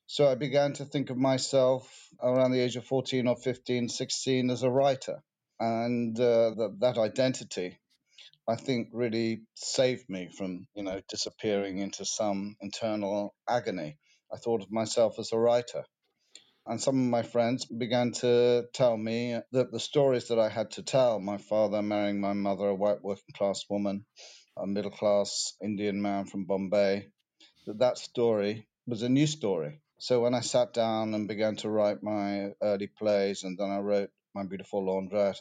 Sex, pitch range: male, 105-125 Hz